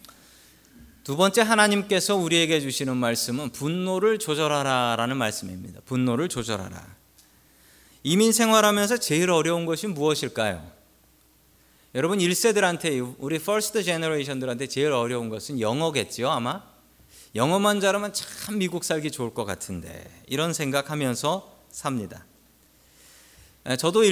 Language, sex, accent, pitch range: Korean, male, native, 120-185 Hz